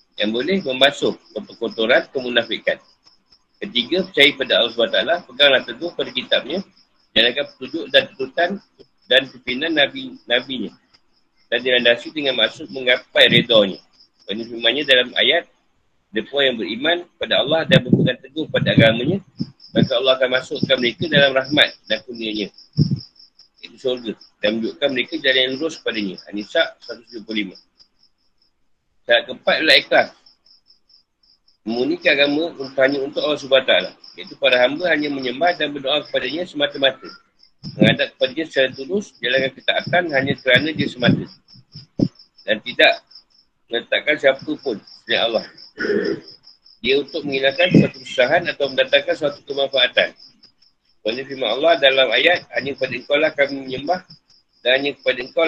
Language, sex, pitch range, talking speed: Malay, male, 125-160 Hz, 140 wpm